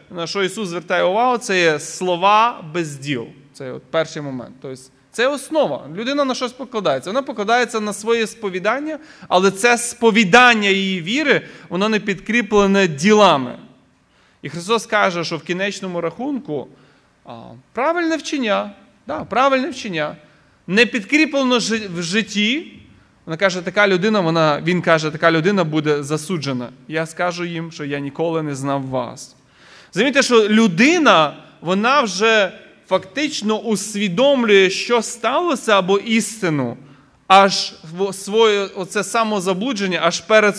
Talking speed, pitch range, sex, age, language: 130 wpm, 170-235 Hz, male, 20-39, Ukrainian